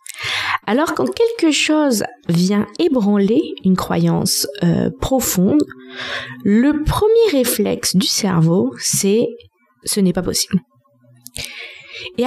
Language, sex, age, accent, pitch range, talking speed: French, female, 20-39, French, 175-265 Hz, 105 wpm